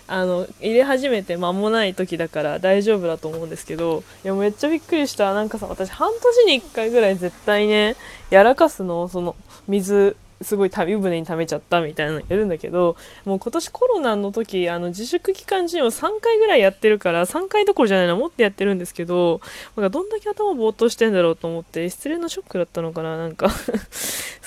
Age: 20-39